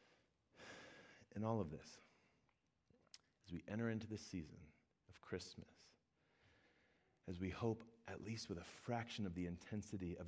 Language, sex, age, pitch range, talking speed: English, male, 30-49, 85-110 Hz, 140 wpm